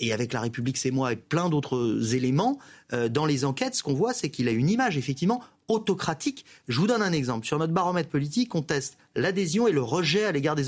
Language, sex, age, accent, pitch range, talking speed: French, male, 30-49, French, 120-175 Hz, 235 wpm